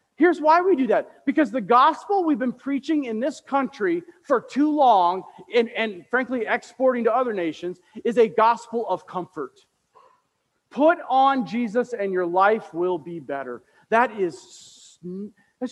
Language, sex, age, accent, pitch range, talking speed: English, male, 40-59, American, 235-325 Hz, 155 wpm